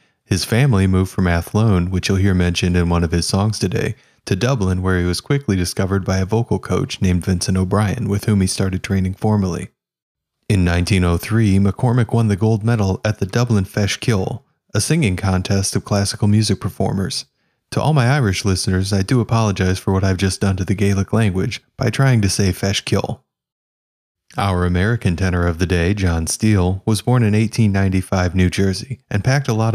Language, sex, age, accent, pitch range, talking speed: English, male, 30-49, American, 95-110 Hz, 190 wpm